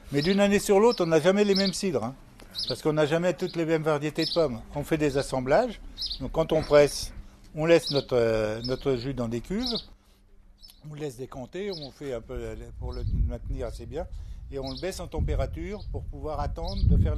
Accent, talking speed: French, 215 wpm